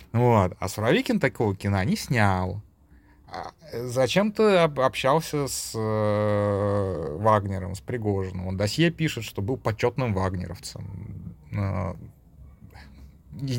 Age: 30-49